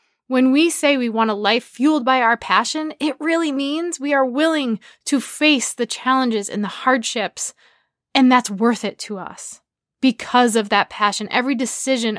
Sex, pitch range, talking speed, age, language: female, 210-260 Hz, 175 wpm, 20-39, English